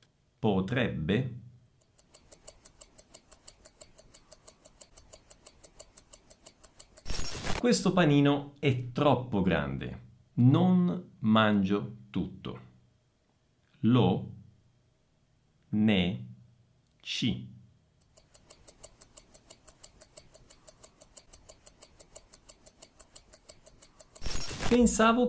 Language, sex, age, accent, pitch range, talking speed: Italian, male, 50-69, native, 105-140 Hz, 30 wpm